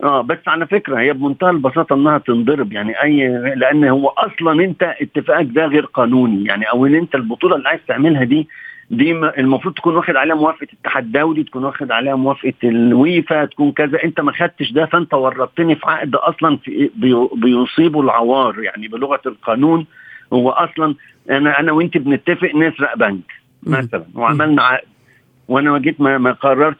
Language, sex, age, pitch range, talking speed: Arabic, male, 50-69, 140-195 Hz, 155 wpm